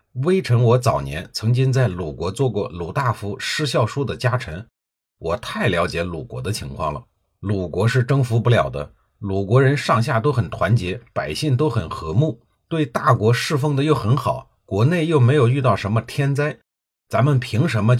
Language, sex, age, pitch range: Chinese, male, 50-69, 110-140 Hz